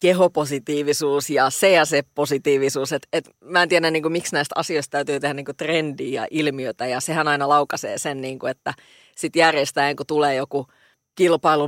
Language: Finnish